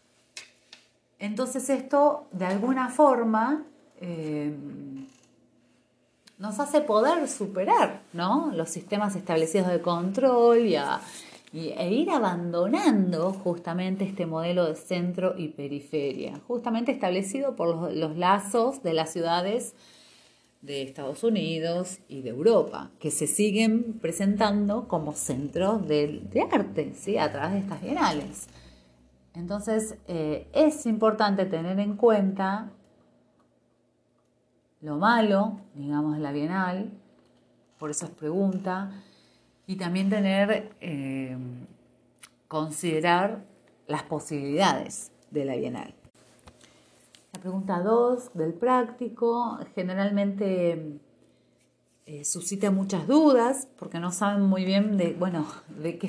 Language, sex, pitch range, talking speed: Spanish, female, 155-215 Hz, 110 wpm